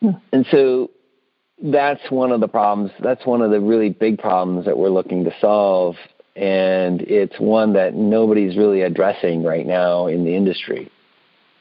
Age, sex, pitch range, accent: 40-59, male, 90-110 Hz, American